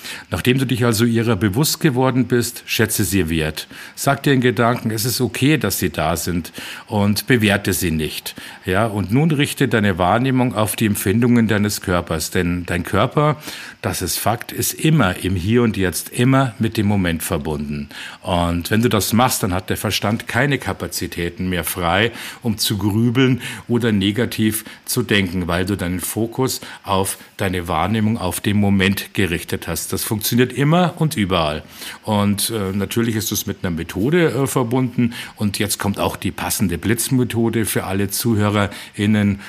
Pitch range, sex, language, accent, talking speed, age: 95-120 Hz, male, German, German, 170 wpm, 50-69